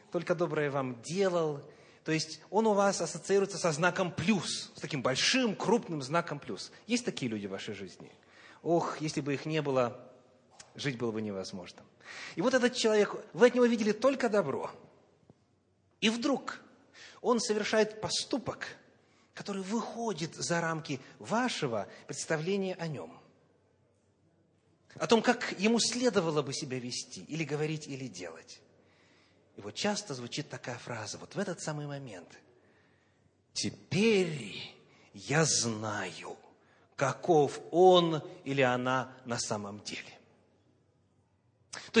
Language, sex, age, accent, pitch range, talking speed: Russian, male, 30-49, native, 140-230 Hz, 130 wpm